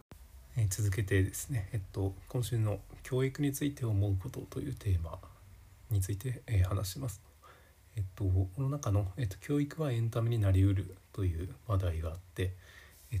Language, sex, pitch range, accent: Japanese, male, 95-120 Hz, native